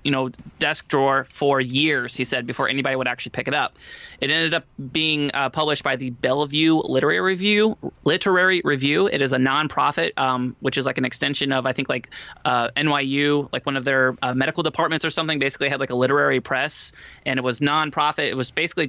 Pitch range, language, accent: 130-155 Hz, English, American